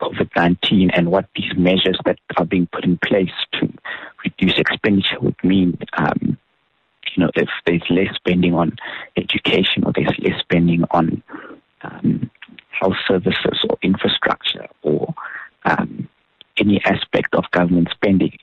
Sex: male